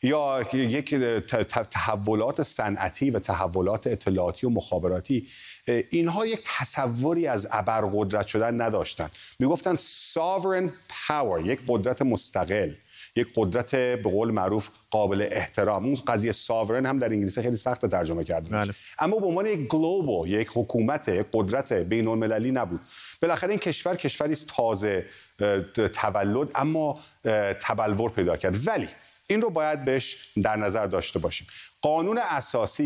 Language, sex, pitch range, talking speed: Persian, male, 105-155 Hz, 135 wpm